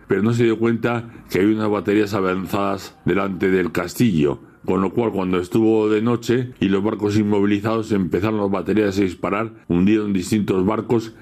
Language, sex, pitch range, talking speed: Spanish, male, 95-110 Hz, 170 wpm